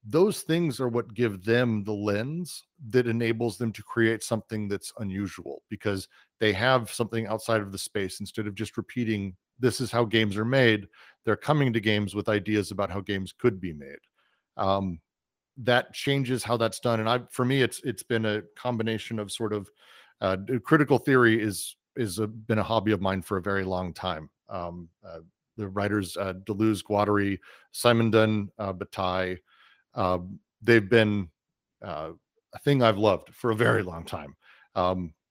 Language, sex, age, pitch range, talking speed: English, male, 40-59, 100-120 Hz, 180 wpm